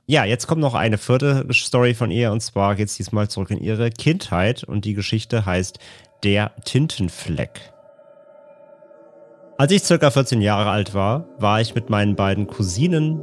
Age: 30-49